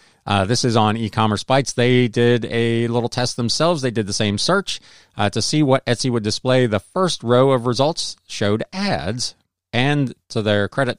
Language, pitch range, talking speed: English, 100-125 Hz, 190 wpm